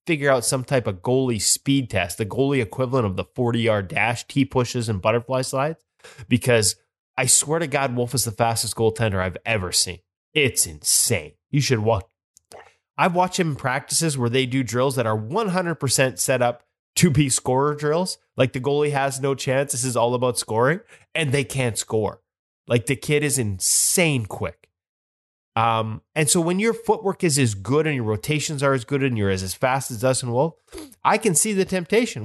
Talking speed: 195 wpm